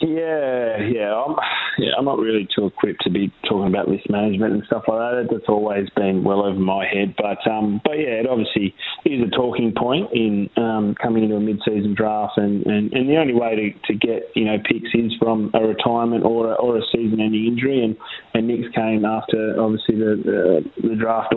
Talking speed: 210 wpm